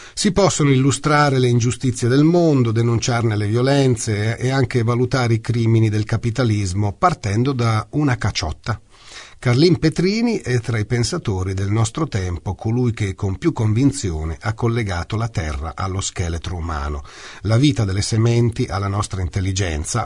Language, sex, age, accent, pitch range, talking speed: Italian, male, 40-59, native, 105-130 Hz, 145 wpm